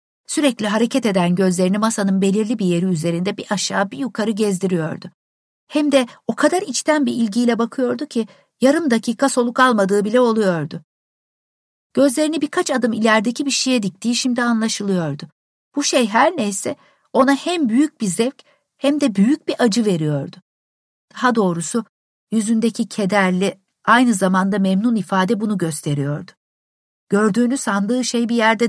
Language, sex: Turkish, female